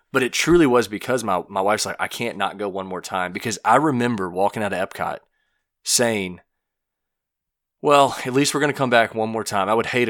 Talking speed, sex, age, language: 225 wpm, male, 30-49, English